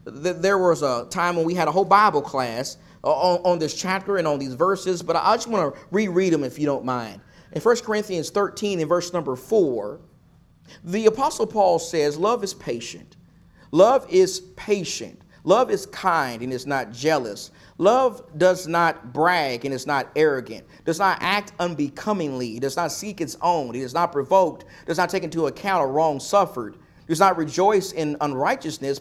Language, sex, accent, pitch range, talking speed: English, male, American, 140-195 Hz, 180 wpm